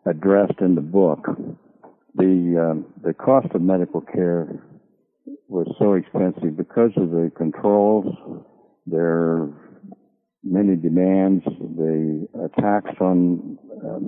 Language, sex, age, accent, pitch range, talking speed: English, male, 60-79, American, 80-95 Hz, 105 wpm